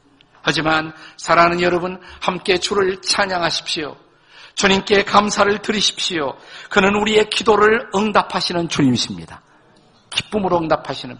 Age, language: 50-69, Korean